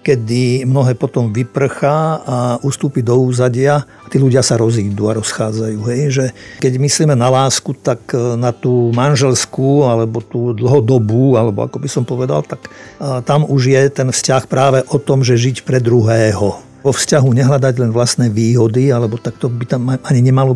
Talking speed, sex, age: 165 wpm, male, 50-69